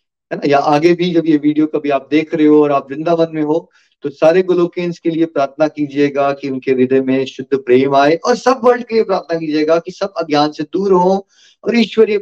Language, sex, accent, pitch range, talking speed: Hindi, male, native, 140-195 Hz, 225 wpm